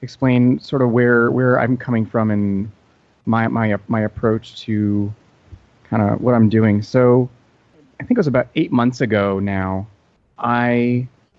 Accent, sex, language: American, male, English